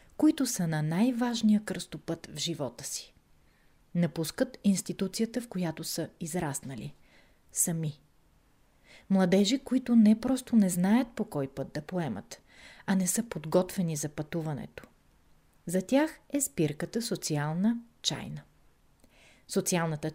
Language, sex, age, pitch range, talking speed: Bulgarian, female, 30-49, 170-235 Hz, 115 wpm